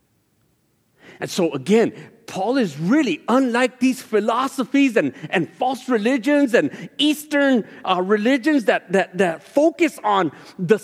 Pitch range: 150-250 Hz